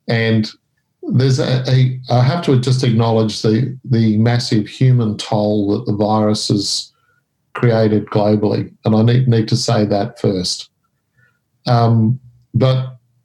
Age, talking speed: 50-69, 135 wpm